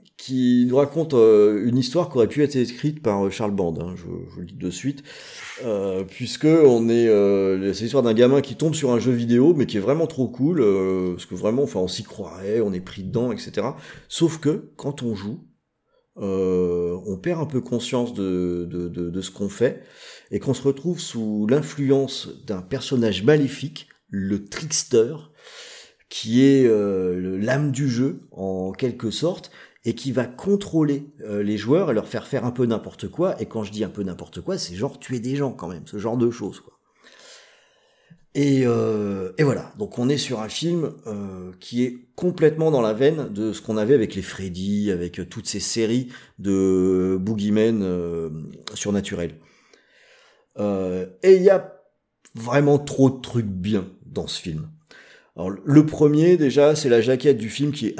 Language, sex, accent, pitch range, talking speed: French, male, French, 100-140 Hz, 190 wpm